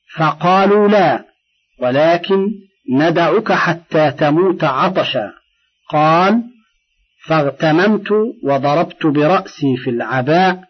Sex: male